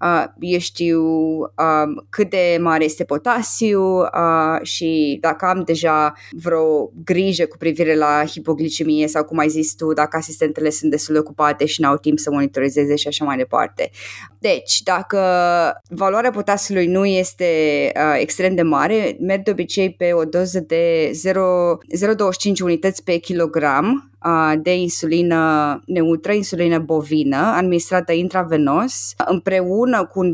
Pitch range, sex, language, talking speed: 155-185 Hz, female, Romanian, 135 wpm